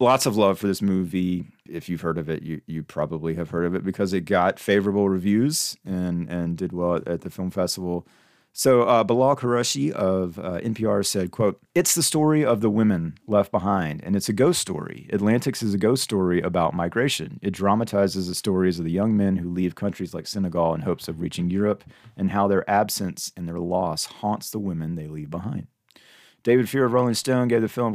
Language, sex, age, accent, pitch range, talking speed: English, male, 30-49, American, 85-110 Hz, 215 wpm